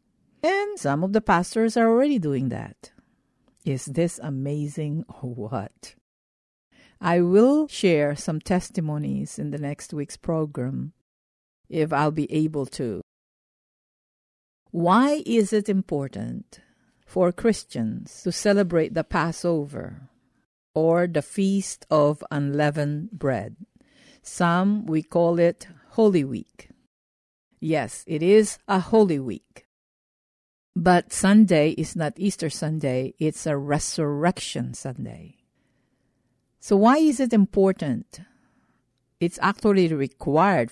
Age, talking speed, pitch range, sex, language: 50-69, 110 wpm, 140-195 Hz, female, English